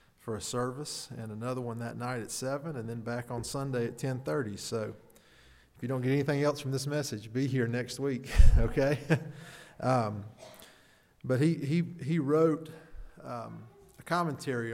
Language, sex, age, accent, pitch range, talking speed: English, male, 40-59, American, 120-155 Hz, 165 wpm